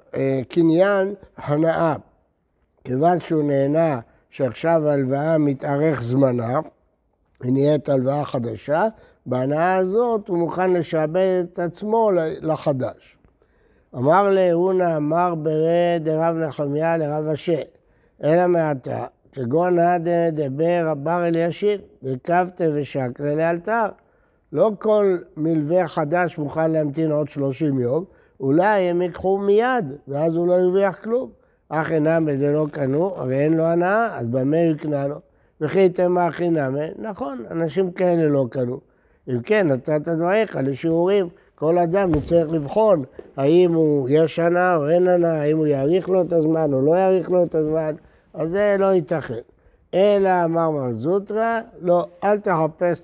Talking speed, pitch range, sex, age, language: 135 wpm, 145-180 Hz, male, 60-79, Hebrew